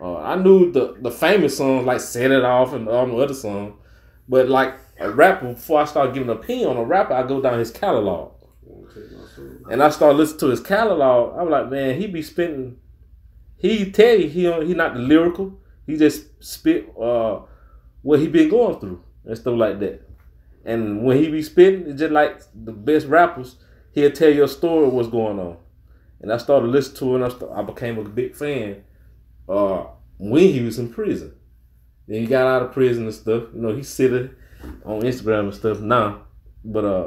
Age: 30-49